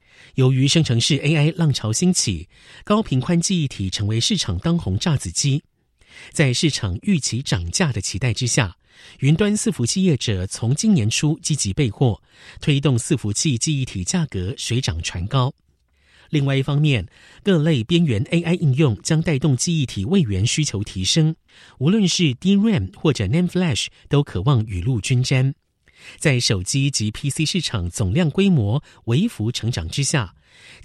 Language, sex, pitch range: Chinese, male, 110-165 Hz